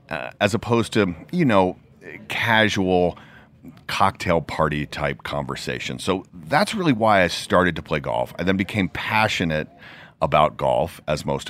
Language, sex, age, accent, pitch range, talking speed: English, male, 40-59, American, 75-100 Hz, 145 wpm